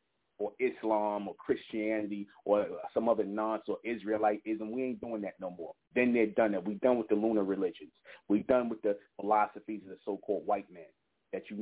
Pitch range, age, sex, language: 105-115 Hz, 30-49, male, English